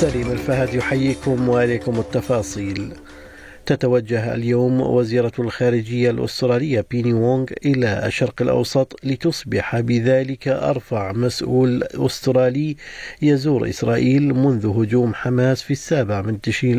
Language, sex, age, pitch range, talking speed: Arabic, male, 50-69, 115-130 Hz, 105 wpm